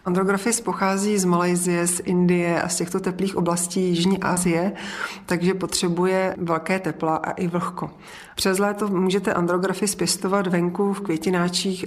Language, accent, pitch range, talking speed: Czech, native, 170-190 Hz, 140 wpm